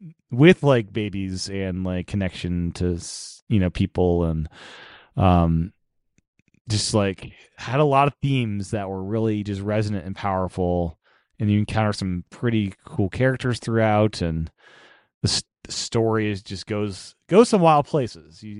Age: 30-49